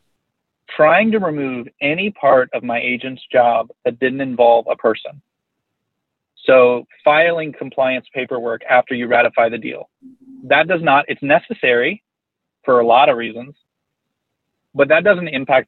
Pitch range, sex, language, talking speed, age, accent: 125-145 Hz, male, English, 140 wpm, 30-49, American